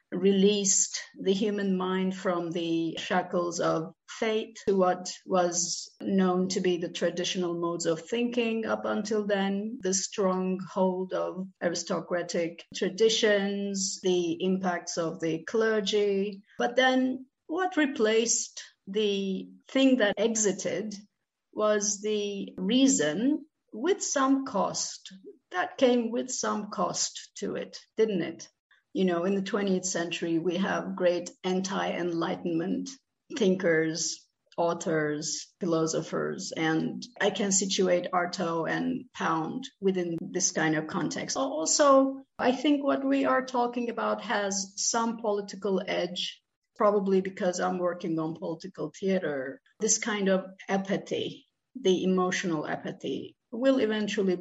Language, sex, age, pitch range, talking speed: Turkish, female, 50-69, 175-220 Hz, 120 wpm